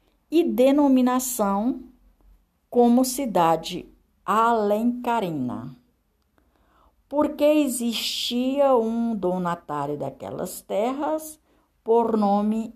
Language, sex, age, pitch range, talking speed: Portuguese, female, 60-79, 175-240 Hz, 60 wpm